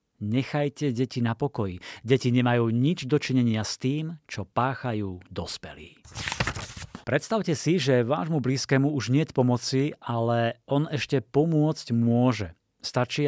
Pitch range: 115-135 Hz